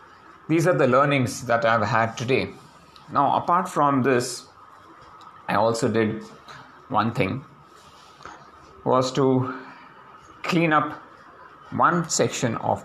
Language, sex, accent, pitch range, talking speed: English, male, Indian, 110-140 Hz, 115 wpm